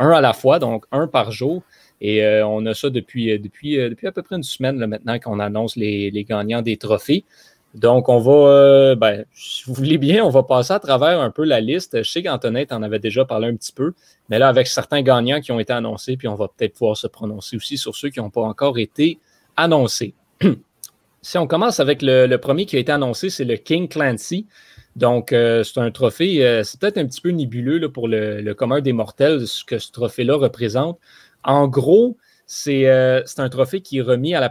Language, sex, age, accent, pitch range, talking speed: French, male, 30-49, Canadian, 115-150 Hz, 230 wpm